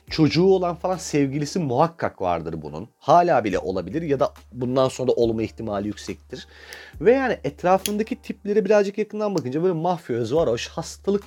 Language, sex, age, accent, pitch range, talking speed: Turkish, male, 40-59, native, 110-175 Hz, 155 wpm